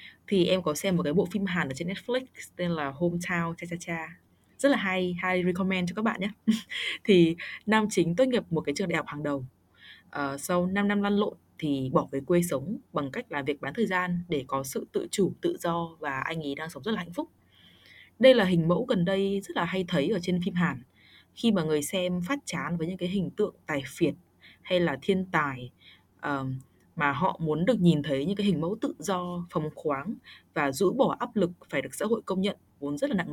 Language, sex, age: Vietnamese, female, 20-39